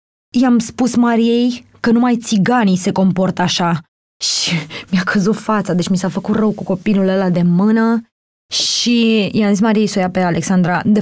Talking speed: 180 wpm